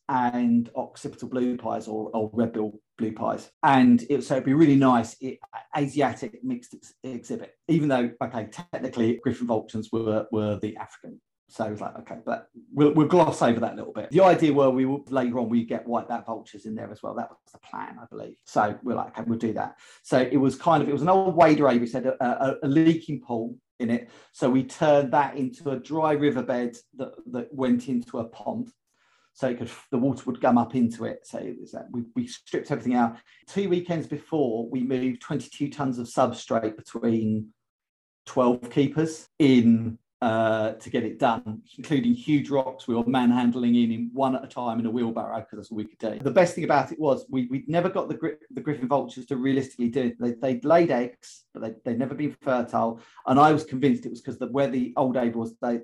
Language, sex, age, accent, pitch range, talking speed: English, male, 30-49, British, 115-145 Hz, 225 wpm